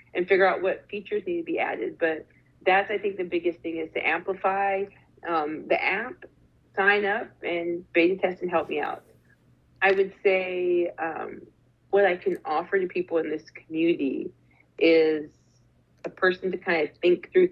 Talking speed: 180 wpm